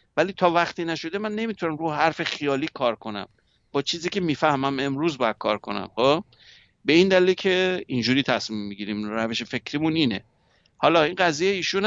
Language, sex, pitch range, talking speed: English, male, 130-170 Hz, 165 wpm